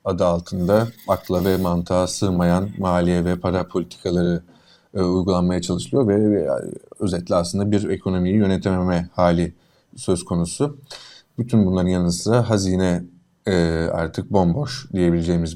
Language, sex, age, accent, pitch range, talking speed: Turkish, male, 30-49, native, 90-110 Hz, 120 wpm